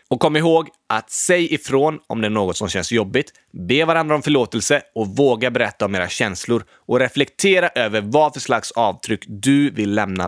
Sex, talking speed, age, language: male, 195 wpm, 20-39, Swedish